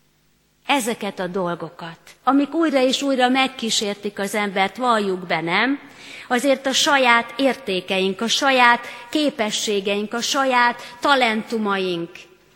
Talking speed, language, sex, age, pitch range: 110 wpm, Hungarian, female, 30-49, 205-275 Hz